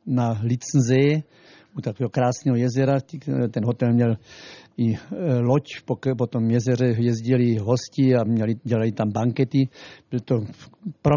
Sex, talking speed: male, 130 wpm